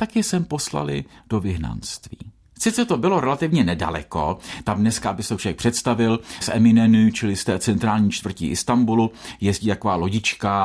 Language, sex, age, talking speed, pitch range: Czech, male, 50-69, 150 wpm, 95-150 Hz